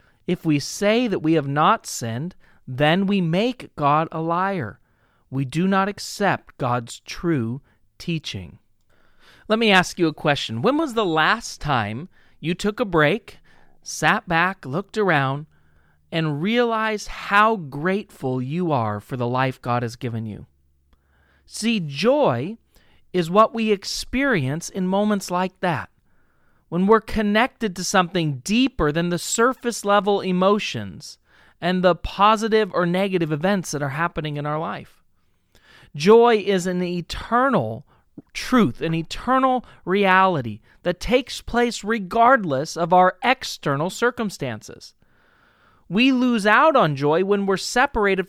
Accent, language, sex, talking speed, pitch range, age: American, English, male, 135 wpm, 140-210 Hz, 40-59